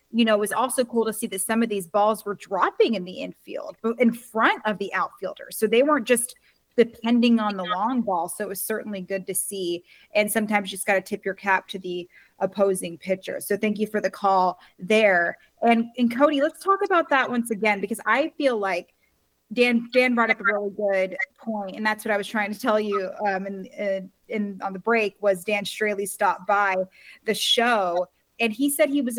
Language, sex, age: English, female, 20-39